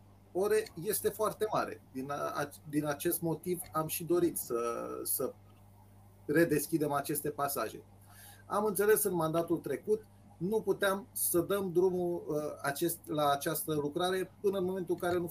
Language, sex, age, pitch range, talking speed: Romanian, male, 30-49, 125-175 Hz, 135 wpm